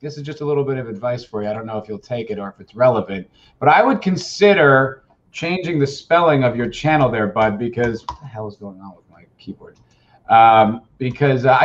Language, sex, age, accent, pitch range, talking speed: English, male, 30-49, American, 115-160 Hz, 235 wpm